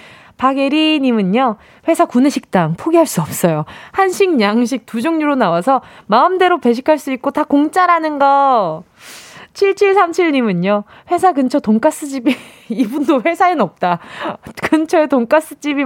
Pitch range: 220-325 Hz